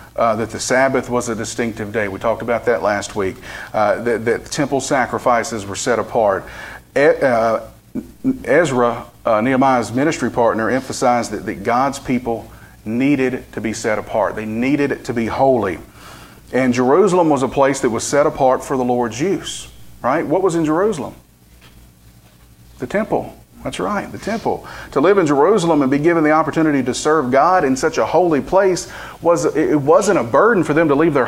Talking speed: 180 wpm